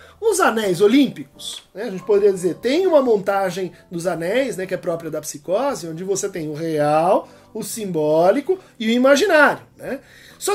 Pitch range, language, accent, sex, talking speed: 185-275 Hz, Portuguese, Brazilian, male, 175 wpm